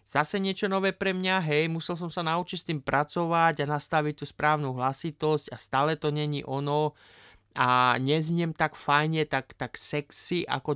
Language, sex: Slovak, male